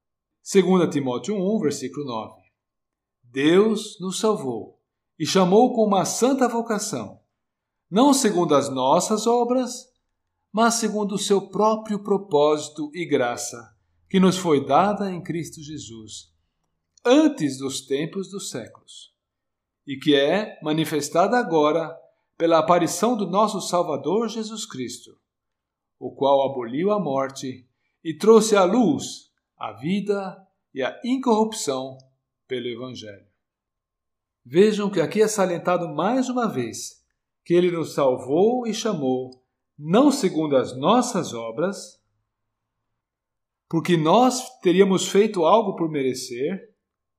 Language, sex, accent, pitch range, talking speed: Portuguese, male, Brazilian, 130-210 Hz, 120 wpm